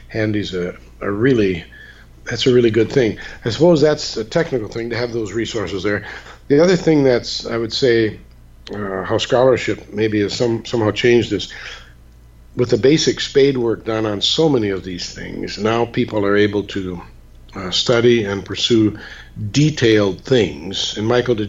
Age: 50-69